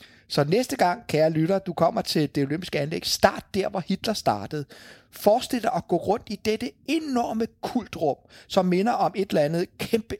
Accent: Danish